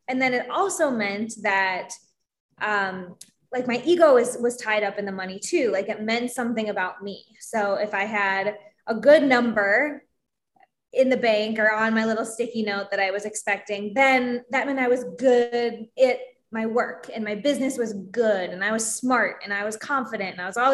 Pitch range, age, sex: 205-255 Hz, 20-39, female